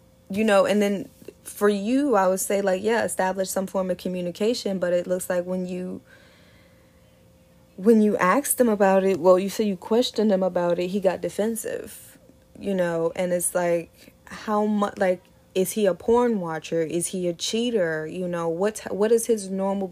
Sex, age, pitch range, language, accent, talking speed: female, 20-39, 175-215 Hz, English, American, 190 wpm